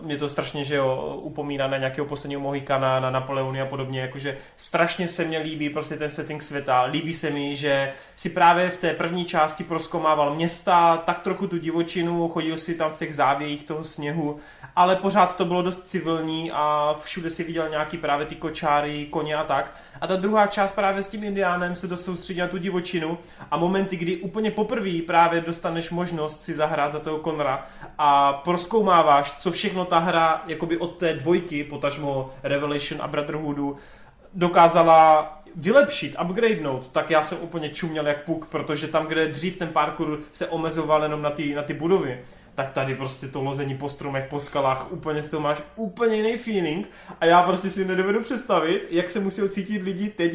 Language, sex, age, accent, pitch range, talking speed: Czech, male, 20-39, native, 150-180 Hz, 185 wpm